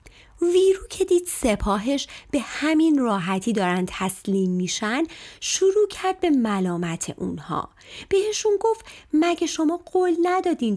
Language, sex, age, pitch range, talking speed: Persian, female, 30-49, 195-300 Hz, 115 wpm